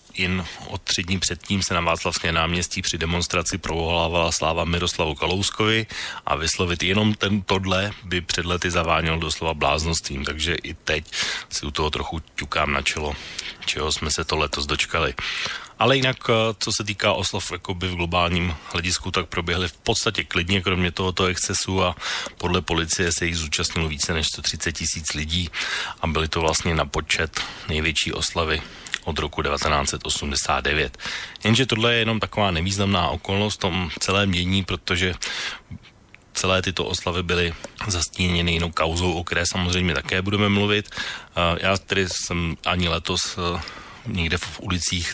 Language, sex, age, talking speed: Slovak, male, 30-49, 150 wpm